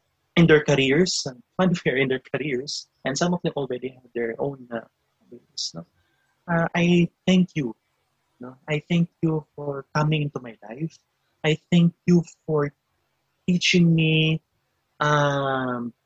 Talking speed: 145 wpm